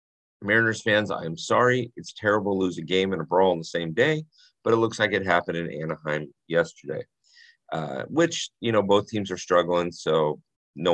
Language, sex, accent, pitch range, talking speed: English, male, American, 85-115 Hz, 195 wpm